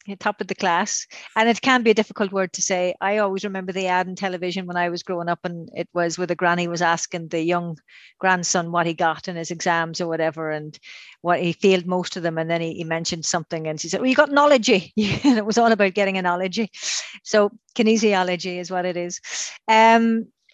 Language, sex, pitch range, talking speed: English, female, 175-220 Hz, 230 wpm